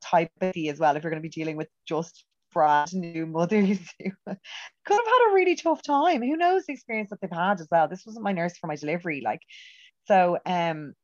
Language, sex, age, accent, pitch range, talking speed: English, female, 30-49, Irish, 130-170 Hz, 230 wpm